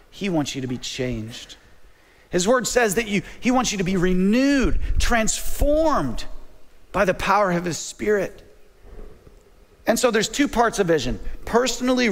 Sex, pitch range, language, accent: male, 185-235 Hz, English, American